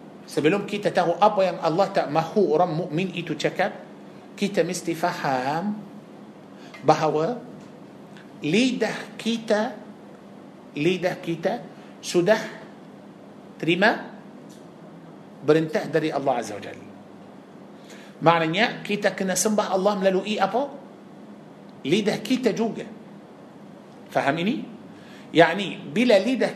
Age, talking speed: 50-69, 95 wpm